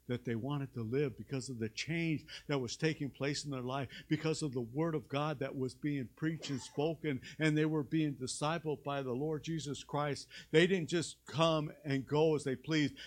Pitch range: 135-195 Hz